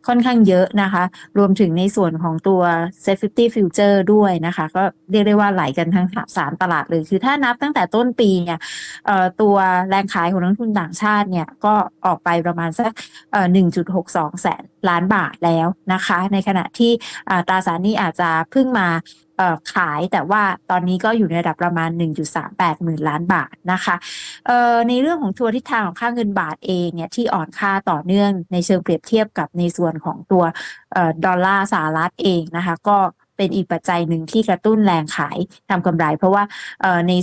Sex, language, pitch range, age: female, Thai, 170-205 Hz, 20-39